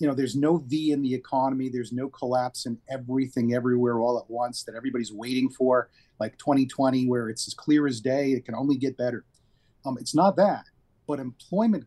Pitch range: 120-145 Hz